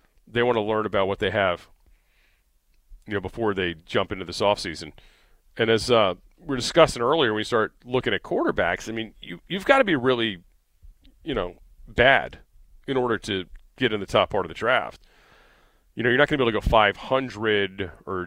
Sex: male